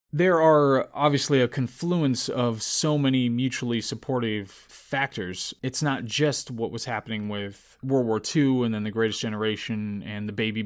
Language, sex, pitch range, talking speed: English, male, 110-135 Hz, 165 wpm